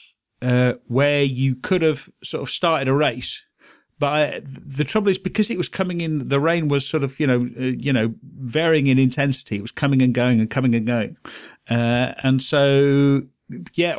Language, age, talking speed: English, 50-69, 195 wpm